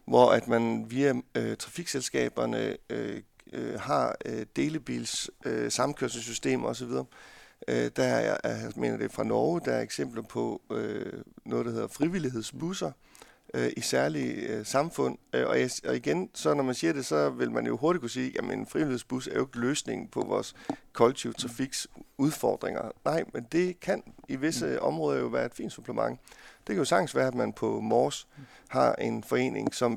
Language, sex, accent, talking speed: Danish, male, native, 175 wpm